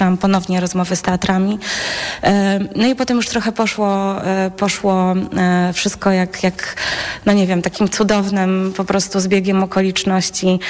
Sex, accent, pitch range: female, native, 185-200 Hz